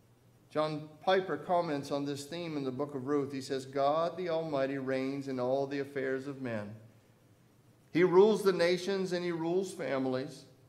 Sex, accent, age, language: male, American, 50-69, English